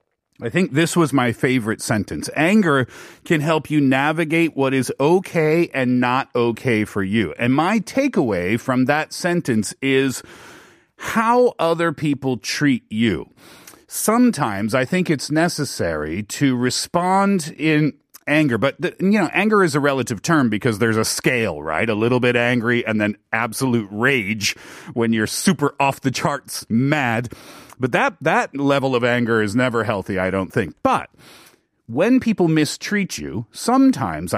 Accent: American